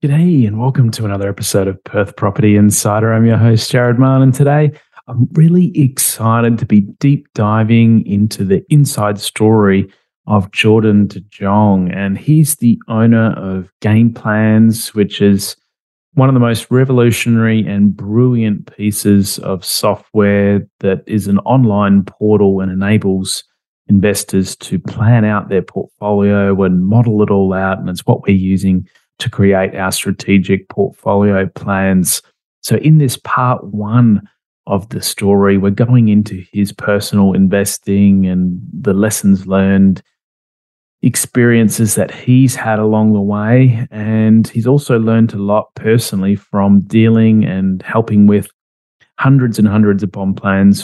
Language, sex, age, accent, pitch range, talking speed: English, male, 30-49, Australian, 100-115 Hz, 145 wpm